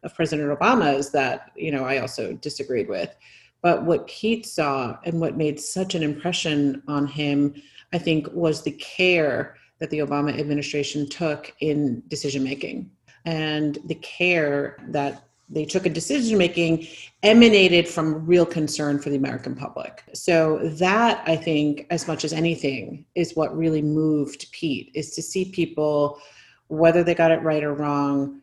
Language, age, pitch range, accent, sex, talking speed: English, 30-49, 145-170 Hz, American, female, 155 wpm